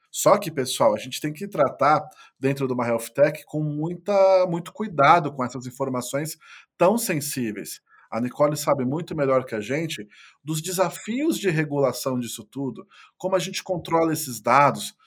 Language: Portuguese